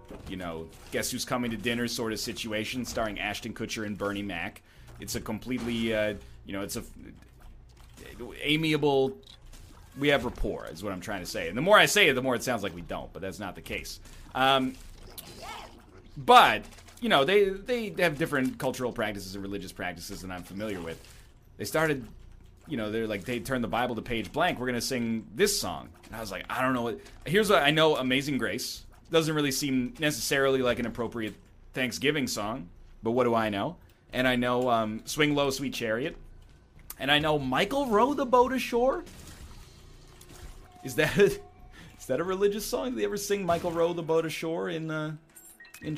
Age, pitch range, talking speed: 30-49, 100-150 Hz, 200 wpm